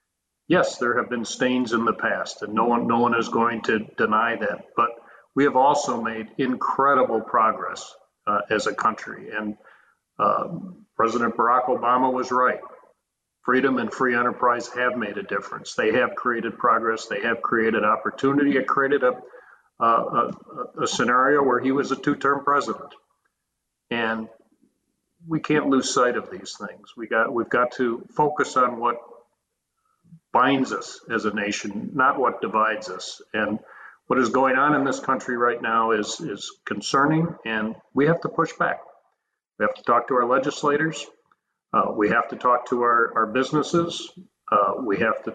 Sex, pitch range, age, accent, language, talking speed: male, 115-145 Hz, 50-69, American, English, 170 wpm